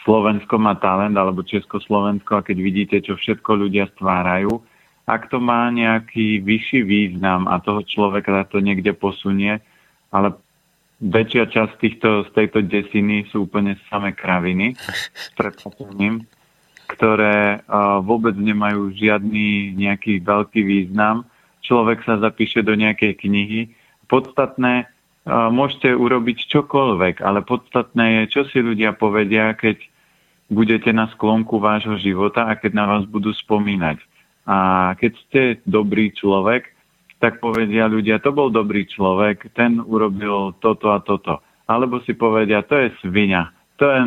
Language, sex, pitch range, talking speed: Slovak, male, 100-115 Hz, 130 wpm